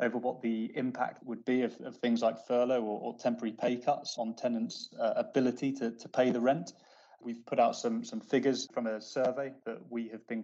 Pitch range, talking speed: 110-125 Hz, 220 wpm